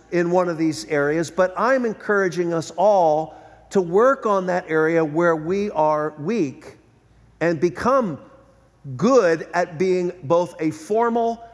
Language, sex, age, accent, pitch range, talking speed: English, male, 50-69, American, 130-185 Hz, 140 wpm